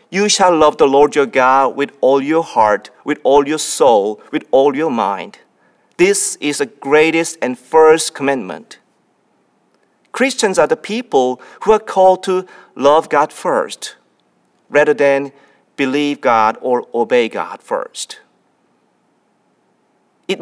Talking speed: 135 wpm